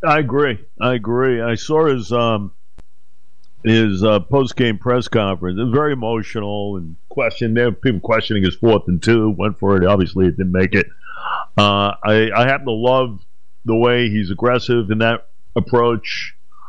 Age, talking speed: 50-69, 175 wpm